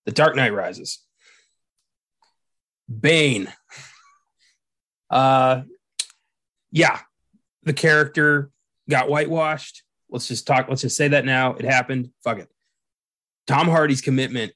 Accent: American